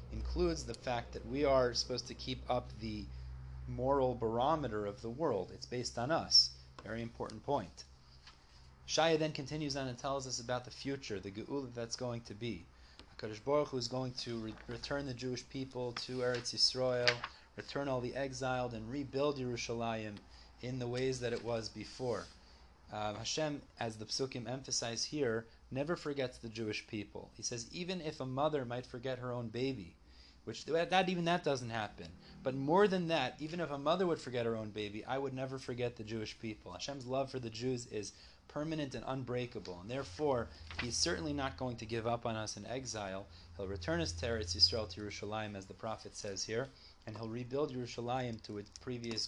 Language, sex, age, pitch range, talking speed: English, male, 30-49, 105-135 Hz, 190 wpm